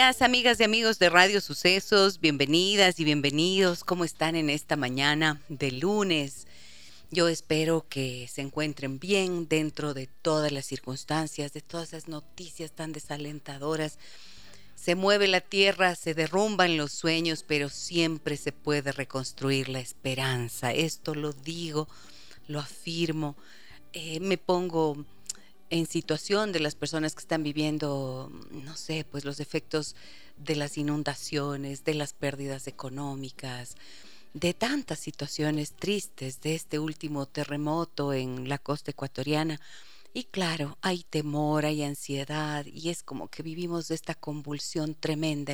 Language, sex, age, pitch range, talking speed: Spanish, female, 40-59, 140-165 Hz, 135 wpm